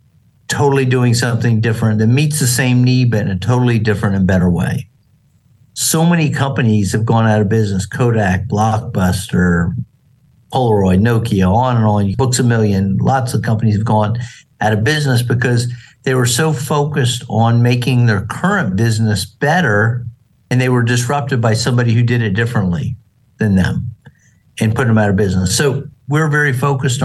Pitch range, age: 110-130 Hz, 50-69